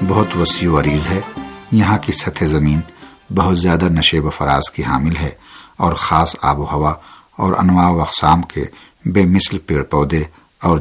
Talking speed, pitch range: 180 wpm, 75-90 Hz